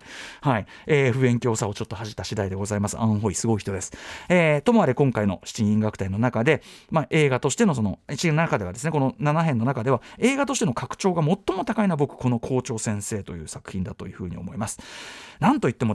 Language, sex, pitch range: Japanese, male, 110-170 Hz